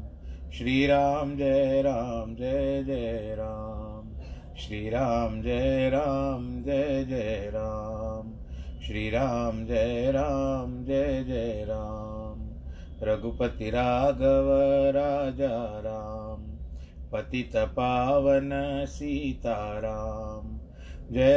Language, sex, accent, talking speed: Hindi, male, native, 80 wpm